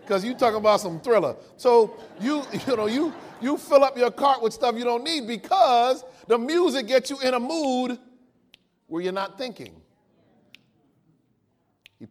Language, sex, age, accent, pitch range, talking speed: English, male, 40-59, American, 170-245 Hz, 170 wpm